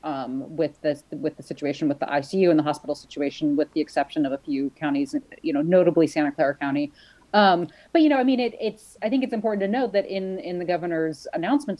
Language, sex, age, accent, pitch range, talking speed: English, female, 30-49, American, 155-210 Hz, 235 wpm